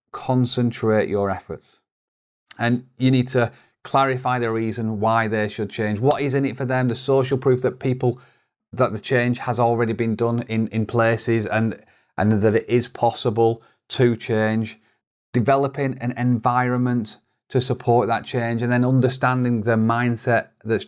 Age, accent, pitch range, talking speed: 30-49, British, 110-130 Hz, 160 wpm